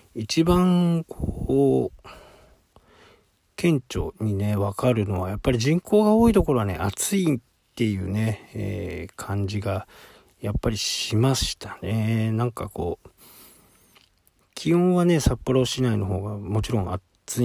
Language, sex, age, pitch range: Japanese, male, 50-69, 95-120 Hz